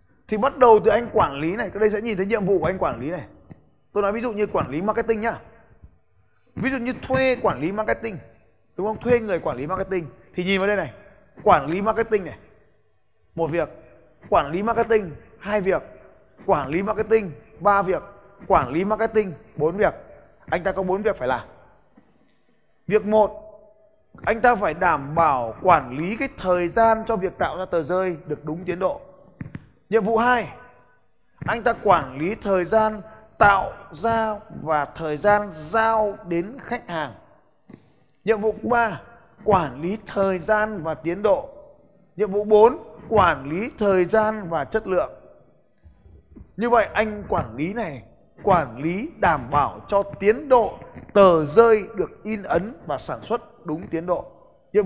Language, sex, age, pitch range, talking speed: Vietnamese, male, 20-39, 170-220 Hz, 175 wpm